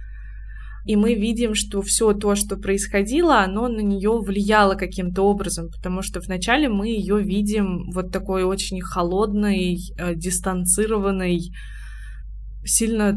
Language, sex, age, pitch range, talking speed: Russian, female, 20-39, 185-215 Hz, 120 wpm